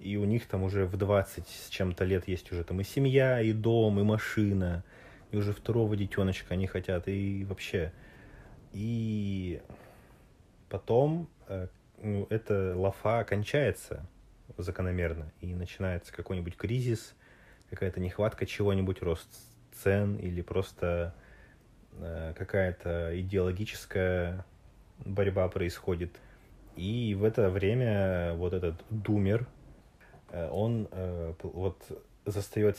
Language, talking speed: Russian, 110 wpm